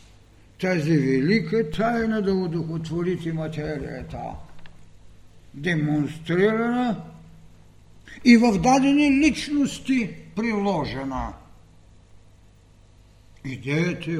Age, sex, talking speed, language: 60-79, male, 55 wpm, Bulgarian